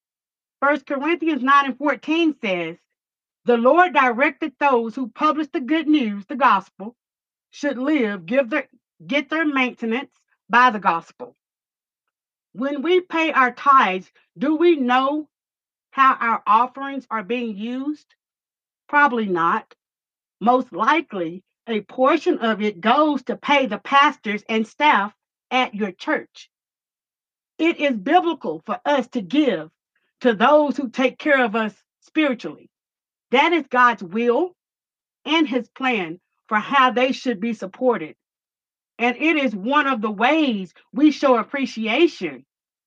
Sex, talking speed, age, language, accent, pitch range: female, 135 wpm, 50-69, English, American, 230-295 Hz